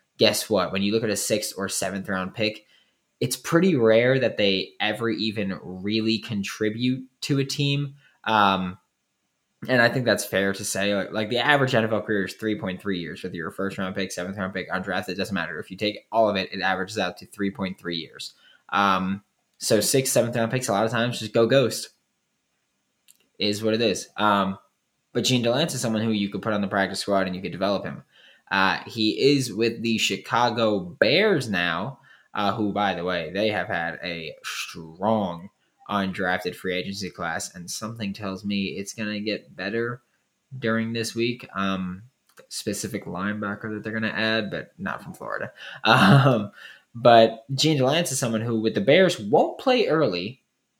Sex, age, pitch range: male, 10-29, 95-120 Hz